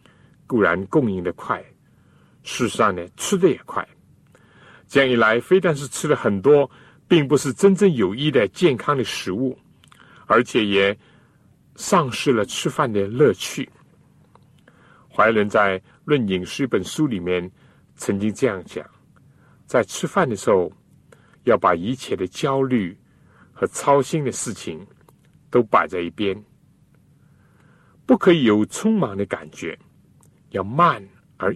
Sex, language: male, Chinese